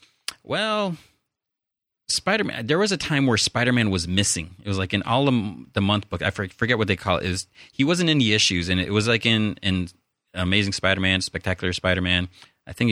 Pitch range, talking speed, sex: 90-115 Hz, 205 wpm, male